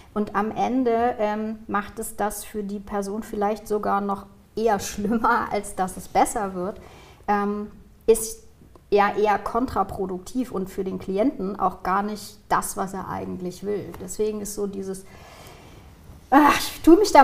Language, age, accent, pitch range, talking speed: German, 30-49, German, 195-225 Hz, 155 wpm